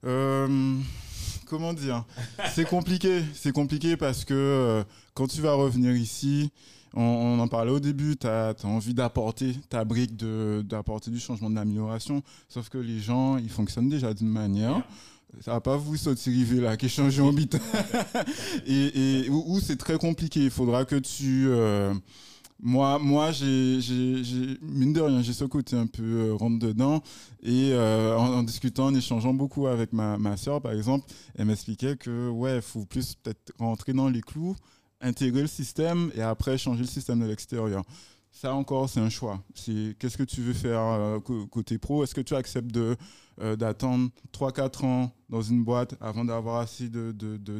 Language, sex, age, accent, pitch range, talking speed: French, male, 20-39, French, 110-135 Hz, 185 wpm